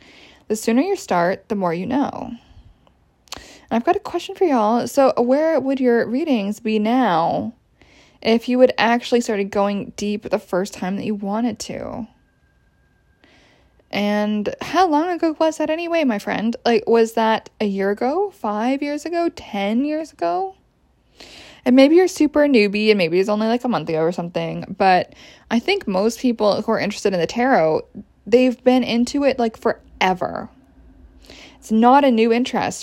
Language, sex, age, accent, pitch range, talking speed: English, female, 10-29, American, 205-270 Hz, 170 wpm